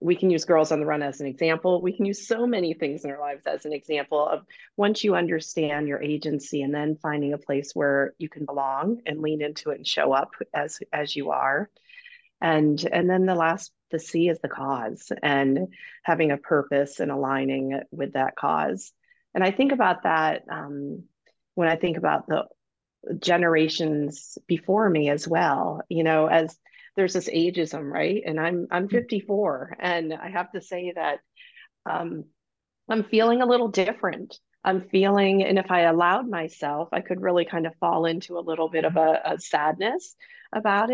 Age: 40-59